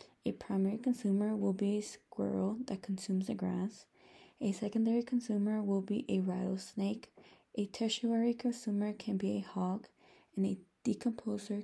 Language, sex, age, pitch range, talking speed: English, female, 20-39, 195-230 Hz, 145 wpm